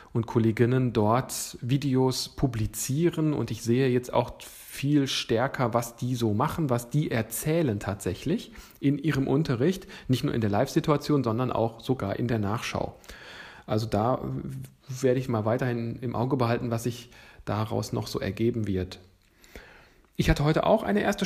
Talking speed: 160 wpm